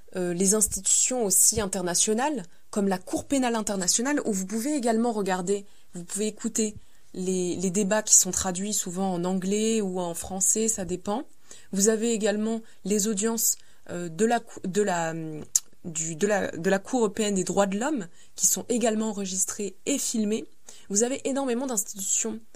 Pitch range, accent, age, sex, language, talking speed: 185-230 Hz, French, 20-39, female, French, 150 wpm